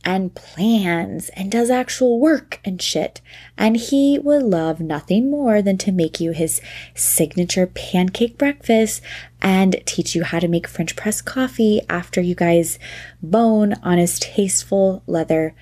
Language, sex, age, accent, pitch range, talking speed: English, female, 20-39, American, 170-255 Hz, 150 wpm